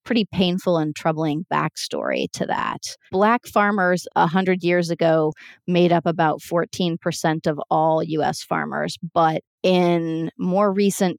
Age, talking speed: 30-49, 140 wpm